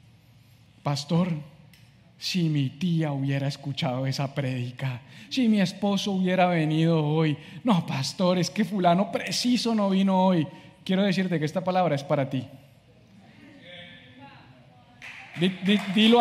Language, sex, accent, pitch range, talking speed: English, male, Colombian, 150-190 Hz, 120 wpm